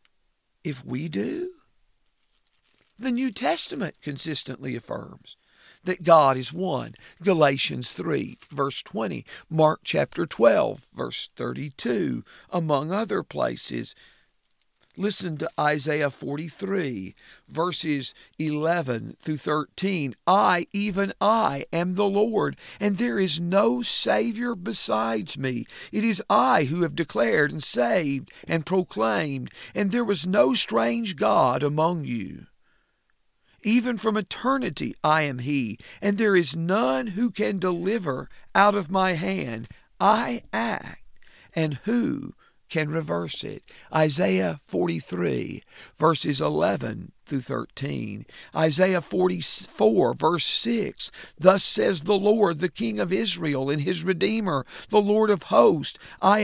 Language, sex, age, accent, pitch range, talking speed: English, male, 50-69, American, 145-205 Hz, 120 wpm